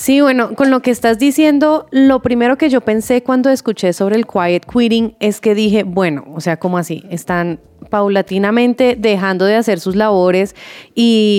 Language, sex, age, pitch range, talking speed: Spanish, female, 20-39, 195-250 Hz, 180 wpm